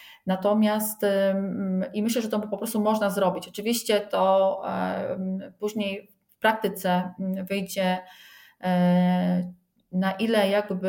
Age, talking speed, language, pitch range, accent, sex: 30-49, 110 wpm, Polish, 185-205 Hz, native, female